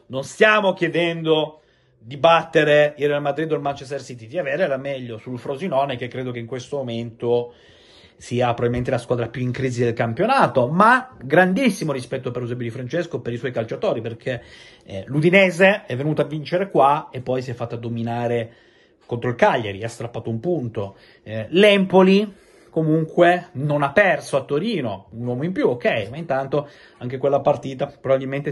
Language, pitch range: Italian, 125-170 Hz